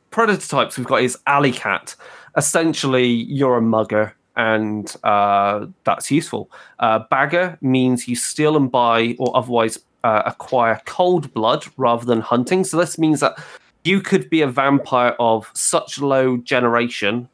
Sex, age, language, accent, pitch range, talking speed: male, 20-39, English, British, 115-140 Hz, 150 wpm